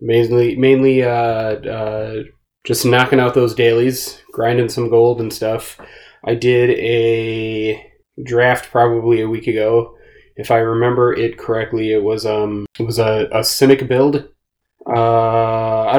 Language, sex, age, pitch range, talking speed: English, male, 20-39, 115-130 Hz, 145 wpm